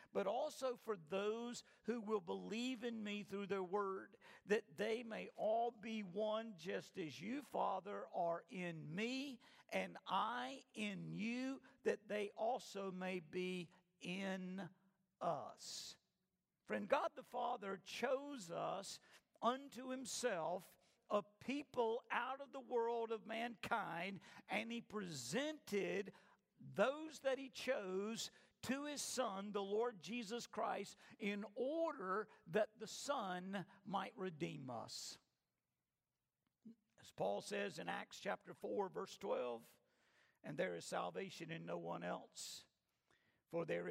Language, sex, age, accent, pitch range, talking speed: English, male, 50-69, American, 180-240 Hz, 125 wpm